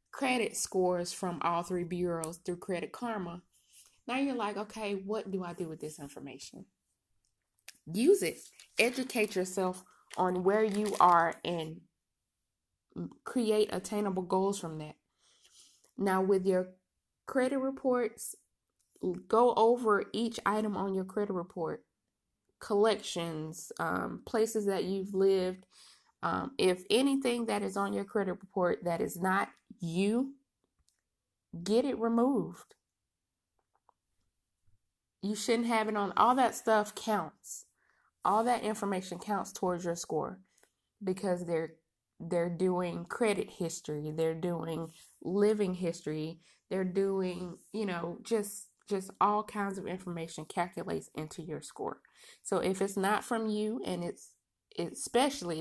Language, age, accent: English, 20-39, American